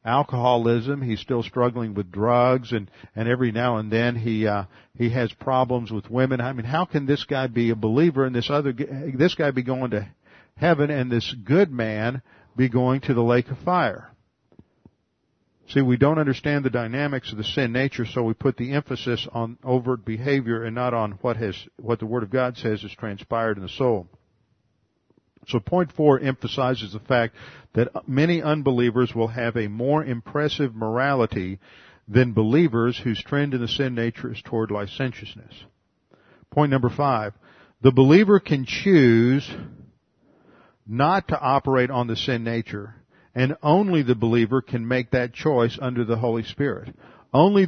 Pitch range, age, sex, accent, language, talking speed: 115-135 Hz, 50-69, male, American, English, 170 wpm